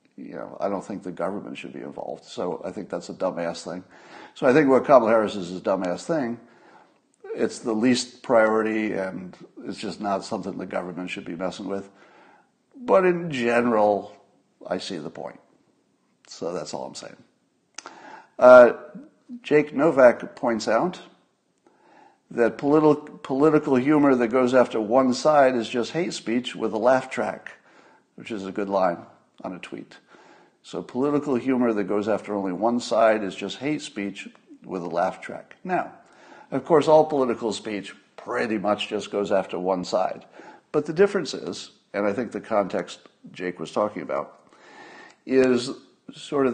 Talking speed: 170 wpm